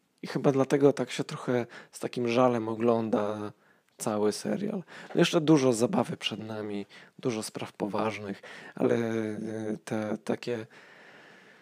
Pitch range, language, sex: 105-120 Hz, Polish, male